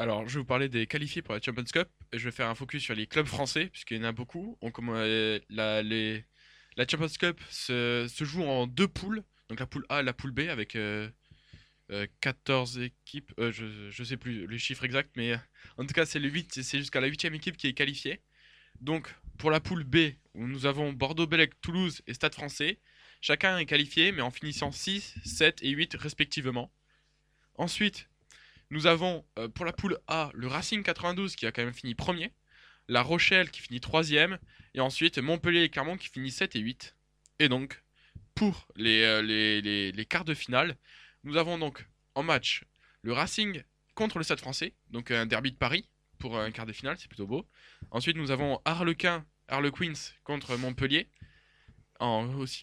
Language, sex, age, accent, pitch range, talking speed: French, male, 20-39, French, 120-160 Hz, 185 wpm